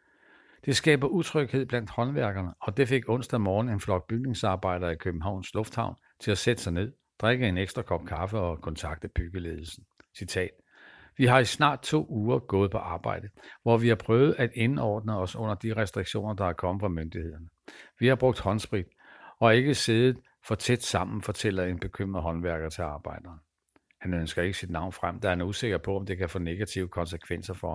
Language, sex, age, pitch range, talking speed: Danish, male, 60-79, 90-120 Hz, 190 wpm